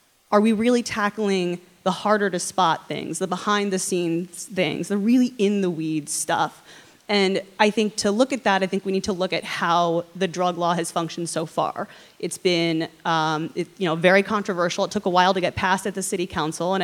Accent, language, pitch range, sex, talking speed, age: American, English, 170-210 Hz, female, 200 wpm, 30-49